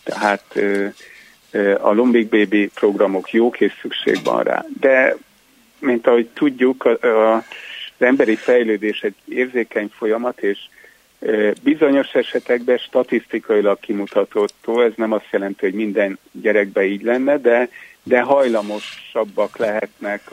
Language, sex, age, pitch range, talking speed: Hungarian, male, 50-69, 105-125 Hz, 110 wpm